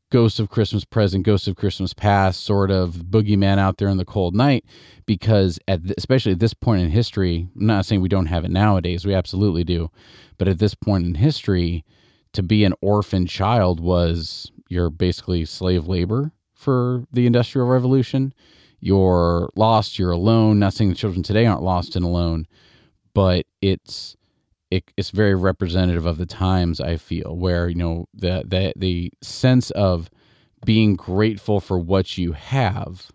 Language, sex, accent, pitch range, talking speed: English, male, American, 90-110 Hz, 170 wpm